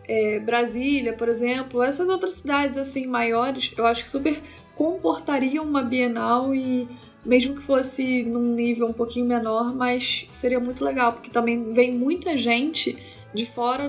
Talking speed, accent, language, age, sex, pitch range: 155 wpm, Brazilian, Portuguese, 10-29, female, 235-300 Hz